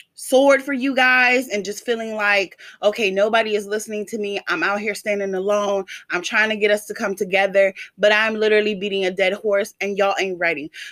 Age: 20-39